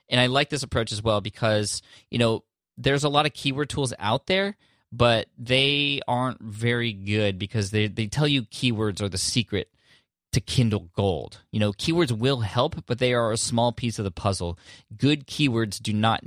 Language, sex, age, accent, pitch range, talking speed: English, male, 20-39, American, 95-115 Hz, 195 wpm